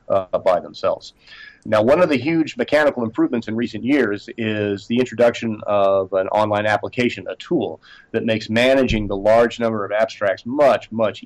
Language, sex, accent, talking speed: English, male, American, 170 wpm